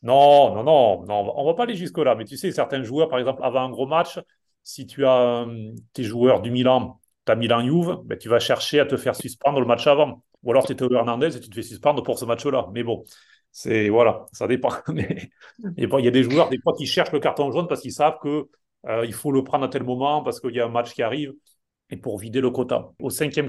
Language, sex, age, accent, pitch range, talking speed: French, male, 30-49, French, 115-145 Hz, 255 wpm